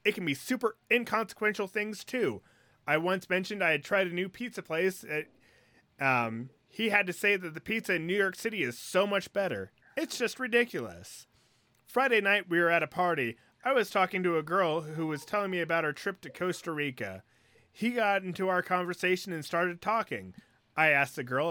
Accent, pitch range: American, 140-195 Hz